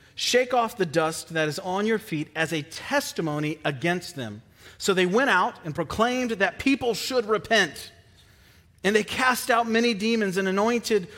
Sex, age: male, 40-59